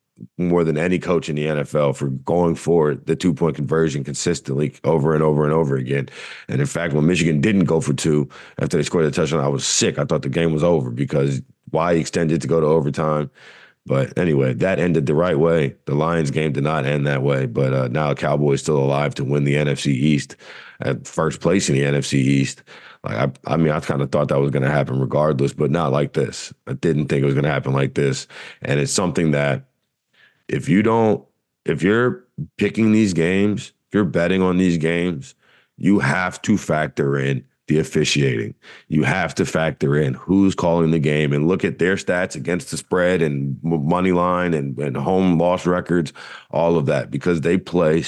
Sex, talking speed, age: male, 205 wpm, 40-59